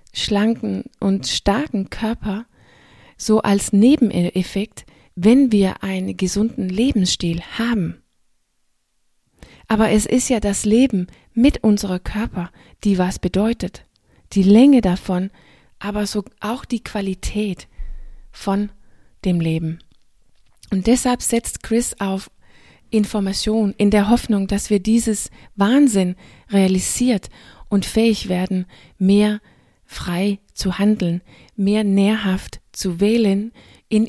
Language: German